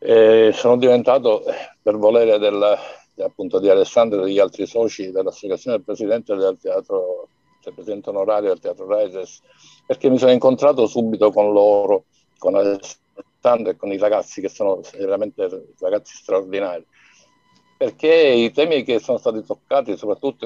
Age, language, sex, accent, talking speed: 60-79, Italian, male, native, 140 wpm